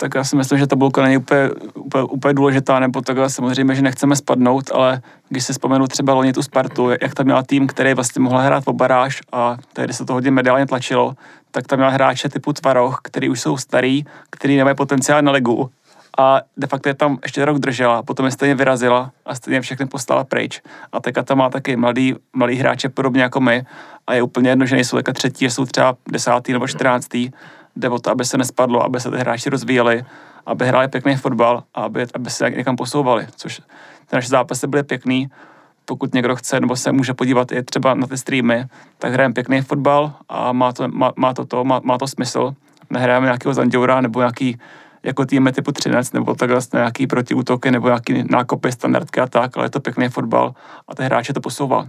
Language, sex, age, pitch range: Czech, male, 30-49, 125-135 Hz